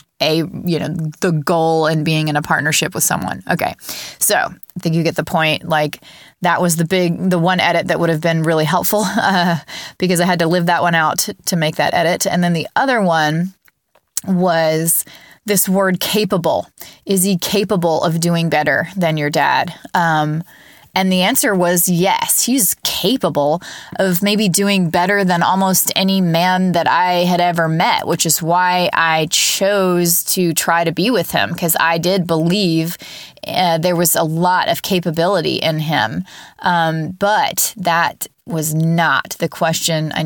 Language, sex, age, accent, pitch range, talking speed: English, female, 20-39, American, 160-185 Hz, 175 wpm